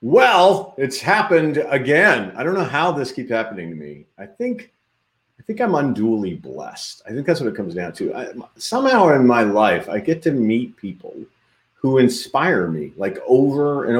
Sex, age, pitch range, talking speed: male, 40-59, 105-150 Hz, 195 wpm